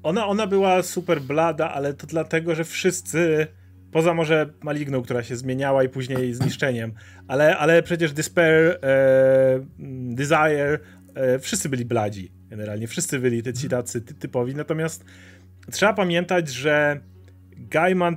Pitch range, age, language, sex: 120-160 Hz, 30-49, Polish, male